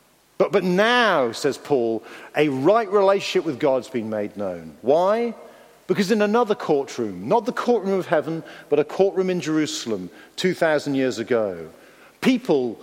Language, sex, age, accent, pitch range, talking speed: English, male, 50-69, British, 155-210 Hz, 150 wpm